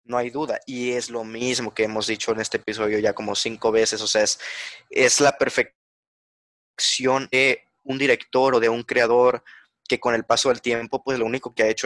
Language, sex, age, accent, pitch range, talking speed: Spanish, male, 20-39, Mexican, 115-145 Hz, 210 wpm